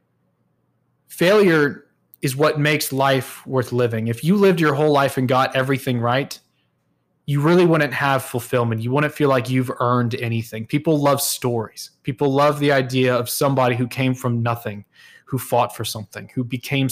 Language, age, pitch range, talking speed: English, 20-39, 120-150 Hz, 170 wpm